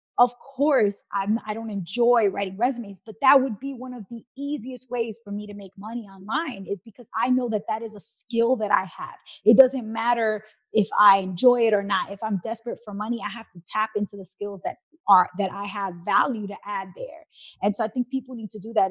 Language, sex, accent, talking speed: English, female, American, 230 wpm